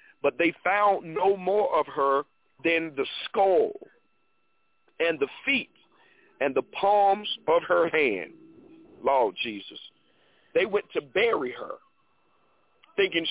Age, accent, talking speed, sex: 50-69, American, 120 wpm, male